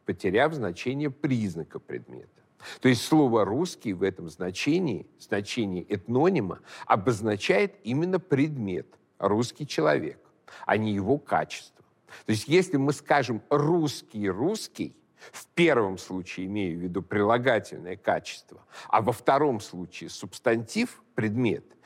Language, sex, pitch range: Russian, male, 105-145 Hz